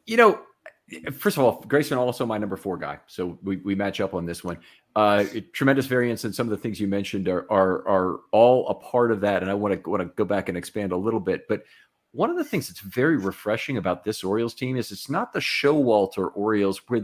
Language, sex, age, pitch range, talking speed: English, male, 40-59, 100-120 Hz, 240 wpm